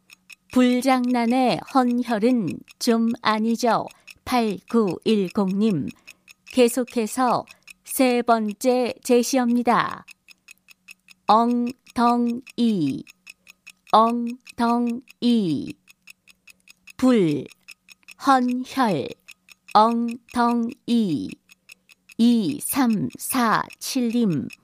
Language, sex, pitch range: Korean, female, 225-250 Hz